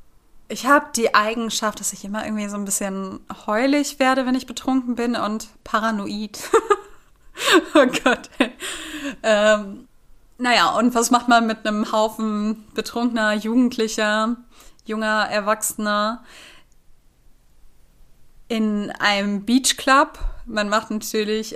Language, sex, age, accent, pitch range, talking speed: German, female, 20-39, German, 210-245 Hz, 110 wpm